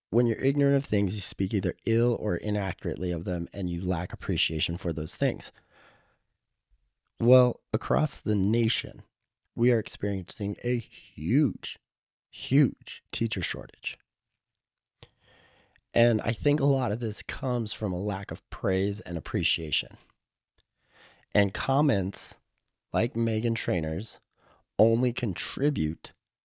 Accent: American